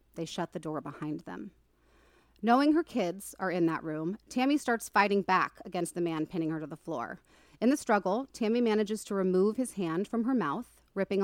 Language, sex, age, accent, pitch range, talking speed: English, female, 30-49, American, 170-230 Hz, 205 wpm